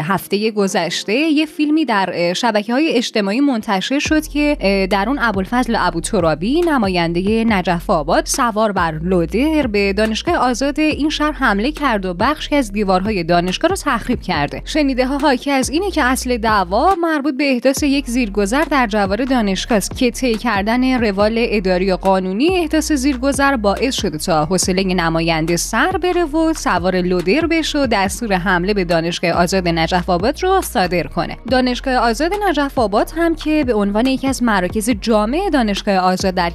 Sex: female